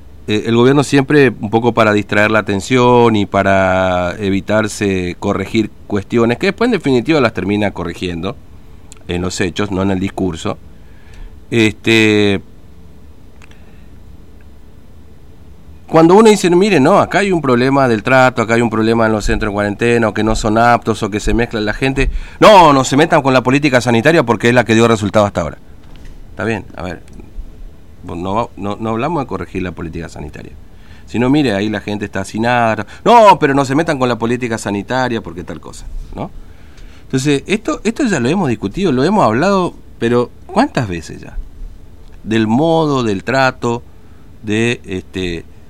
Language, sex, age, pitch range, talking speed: Spanish, male, 40-59, 90-120 Hz, 175 wpm